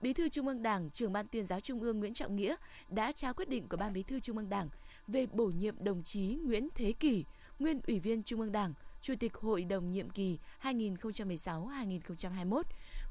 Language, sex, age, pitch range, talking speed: Vietnamese, female, 20-39, 190-245 Hz, 210 wpm